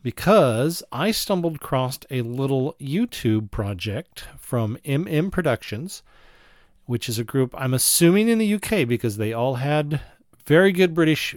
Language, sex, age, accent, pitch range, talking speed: English, male, 40-59, American, 115-150 Hz, 145 wpm